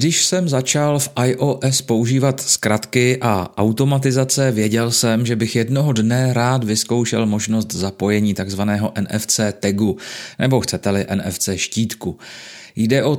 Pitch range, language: 110-135 Hz, Czech